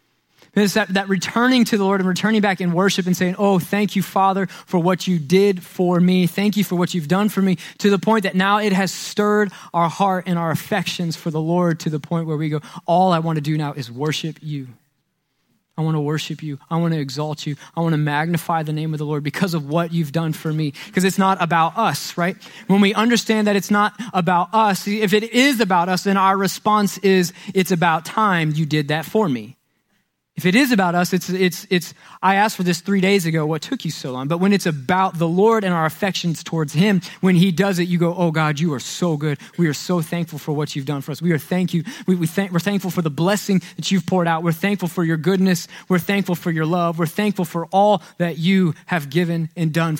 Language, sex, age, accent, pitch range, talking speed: English, male, 20-39, American, 160-195 Hz, 250 wpm